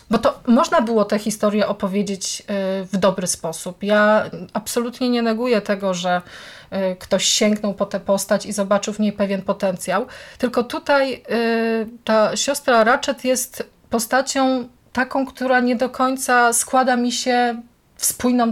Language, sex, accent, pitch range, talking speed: Polish, female, native, 200-250 Hz, 145 wpm